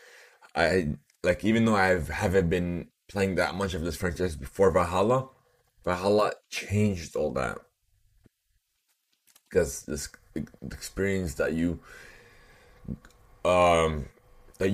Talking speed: 105 wpm